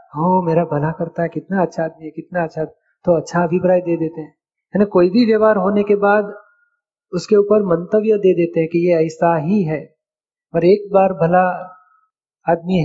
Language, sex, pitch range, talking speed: Hindi, male, 170-200 Hz, 185 wpm